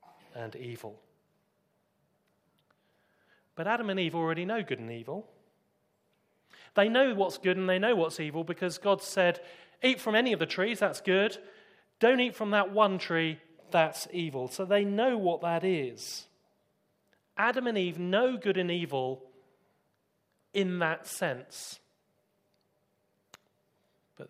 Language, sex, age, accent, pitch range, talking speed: English, male, 30-49, British, 150-205 Hz, 140 wpm